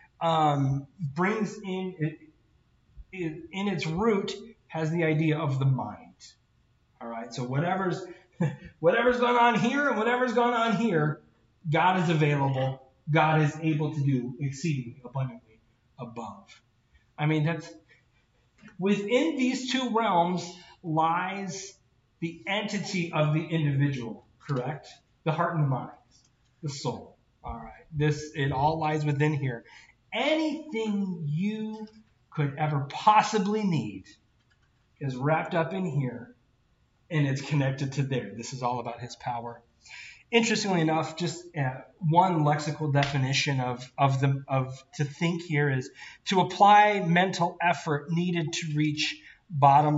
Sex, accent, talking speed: male, American, 135 wpm